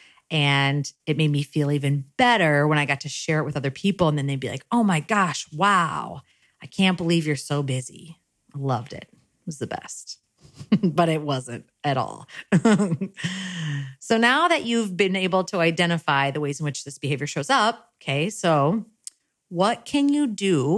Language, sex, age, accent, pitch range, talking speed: English, female, 30-49, American, 140-195 Hz, 190 wpm